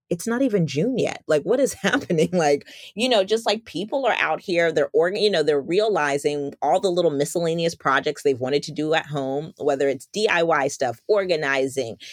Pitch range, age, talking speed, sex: 135-195 Hz, 30-49, 200 wpm, female